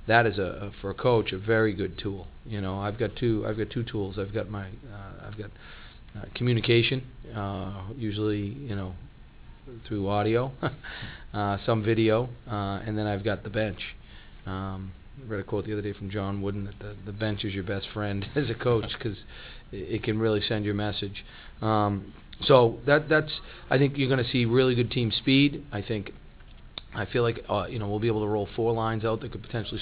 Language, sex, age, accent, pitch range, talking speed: English, male, 40-59, American, 100-115 Hz, 215 wpm